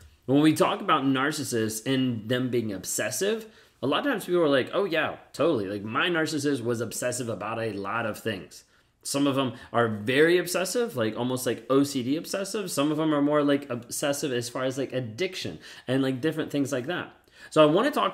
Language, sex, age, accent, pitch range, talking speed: English, male, 30-49, American, 115-145 Hz, 210 wpm